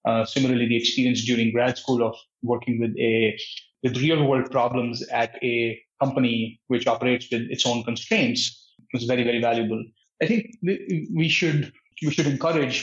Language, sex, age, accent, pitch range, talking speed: English, male, 30-49, Indian, 120-145 Hz, 165 wpm